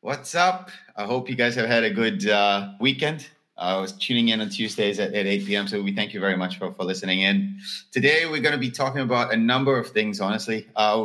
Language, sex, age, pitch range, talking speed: English, male, 30-49, 105-145 Hz, 250 wpm